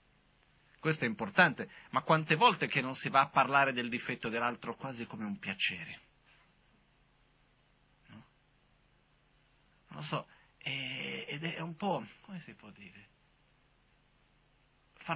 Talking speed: 130 wpm